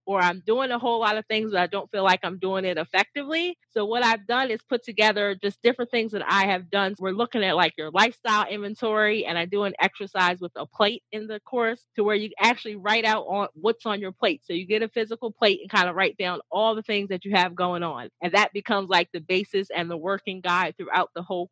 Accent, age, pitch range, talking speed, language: American, 30-49, 190-220 Hz, 260 wpm, English